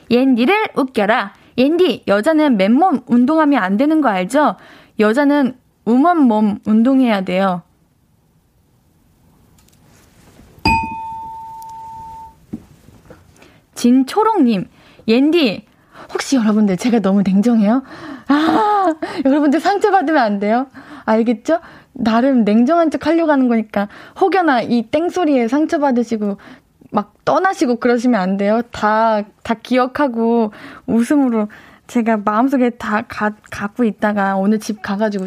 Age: 20-39